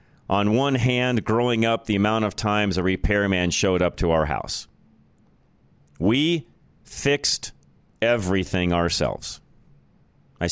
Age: 40-59